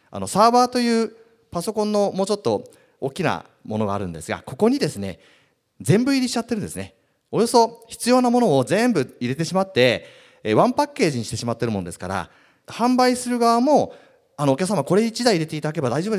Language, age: Japanese, 40-59